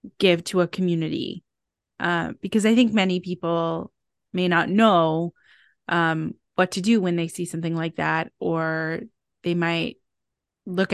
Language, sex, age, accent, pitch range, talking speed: English, female, 20-39, American, 165-190 Hz, 150 wpm